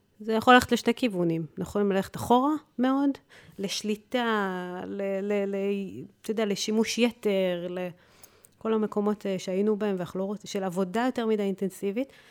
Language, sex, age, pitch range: Hebrew, female, 30-49, 190-230 Hz